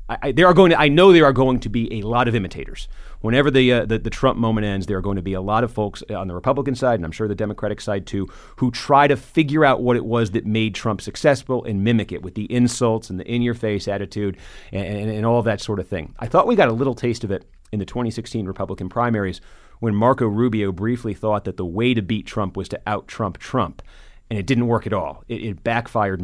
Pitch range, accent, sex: 95-120 Hz, American, male